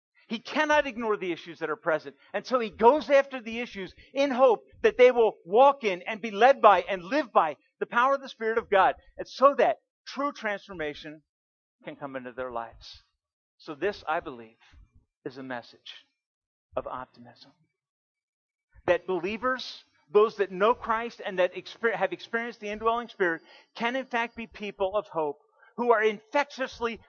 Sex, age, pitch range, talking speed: male, 50-69, 190-265 Hz, 175 wpm